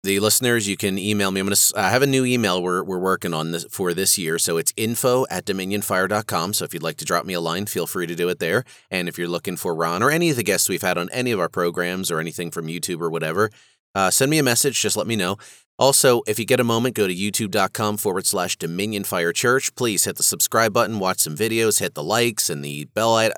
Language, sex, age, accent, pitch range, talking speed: English, male, 30-49, American, 90-120 Hz, 260 wpm